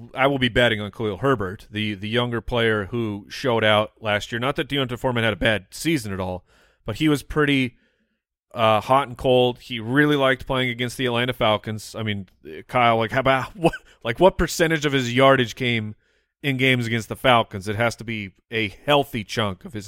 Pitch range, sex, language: 105-135 Hz, male, English